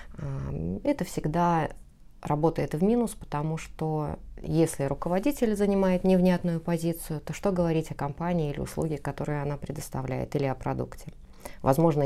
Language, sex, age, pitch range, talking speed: Russian, female, 20-39, 145-175 Hz, 130 wpm